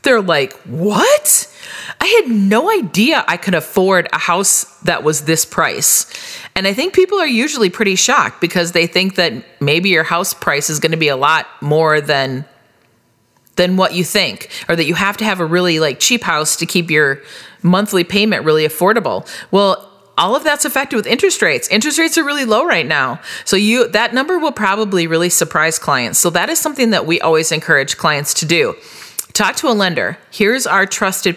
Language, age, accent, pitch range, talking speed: English, 30-49, American, 160-220 Hz, 200 wpm